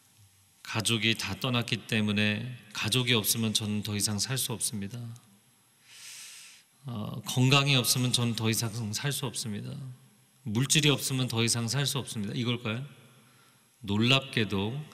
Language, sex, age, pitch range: Korean, male, 40-59, 115-180 Hz